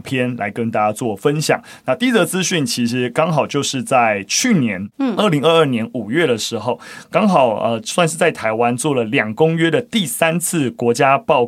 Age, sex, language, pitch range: 20-39, male, Chinese, 120-175 Hz